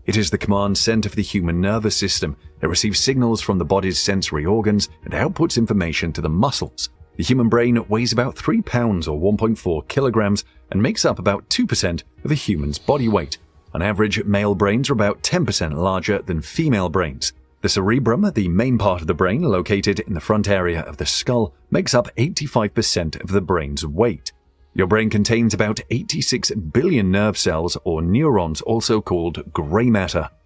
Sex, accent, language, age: male, British, English, 30-49